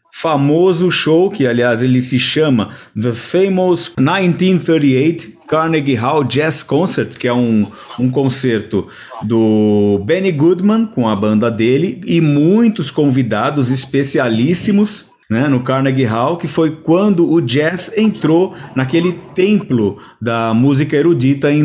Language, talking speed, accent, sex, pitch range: Portuguese, 130 wpm, Brazilian, male, 125-180 Hz